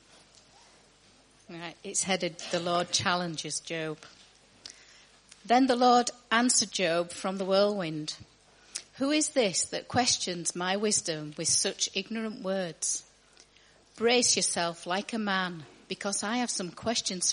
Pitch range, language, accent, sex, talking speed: 170-205 Hz, English, British, female, 120 wpm